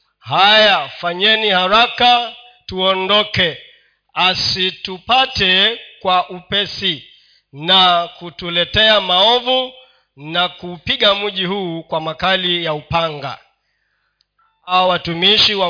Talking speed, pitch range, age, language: 80 wpm, 175-215 Hz, 40-59, Swahili